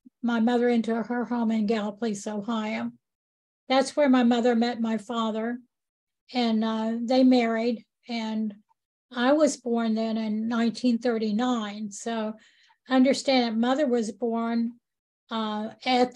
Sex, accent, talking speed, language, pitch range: female, American, 125 wpm, English, 225-255 Hz